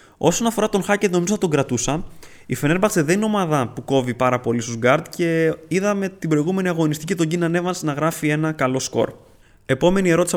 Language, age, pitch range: Greek, 20-39, 125-170 Hz